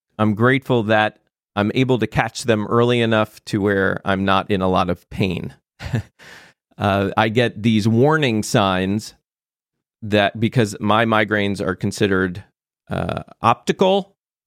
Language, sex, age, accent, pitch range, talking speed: English, male, 40-59, American, 105-125 Hz, 135 wpm